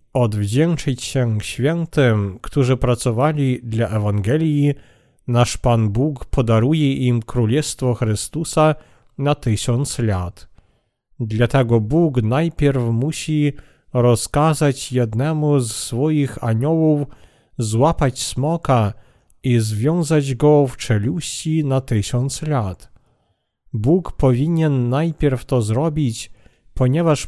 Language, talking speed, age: Polish, 90 wpm, 40-59